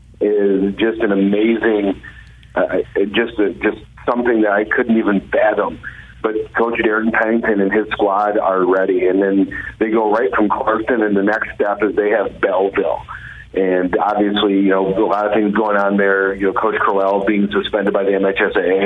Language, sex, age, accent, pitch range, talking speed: English, male, 40-59, American, 95-105 Hz, 185 wpm